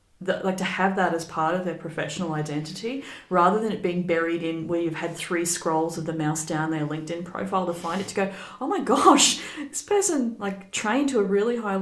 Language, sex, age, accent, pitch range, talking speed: English, female, 30-49, Australian, 160-195 Hz, 225 wpm